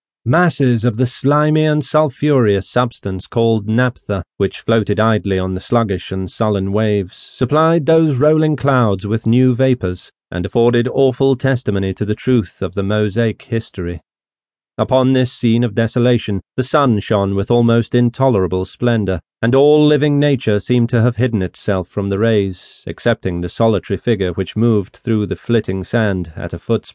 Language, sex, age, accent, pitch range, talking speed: English, male, 40-59, British, 100-130 Hz, 165 wpm